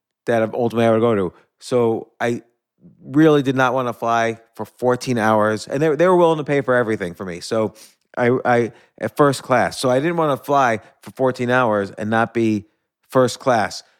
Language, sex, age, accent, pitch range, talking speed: English, male, 30-49, American, 120-150 Hz, 205 wpm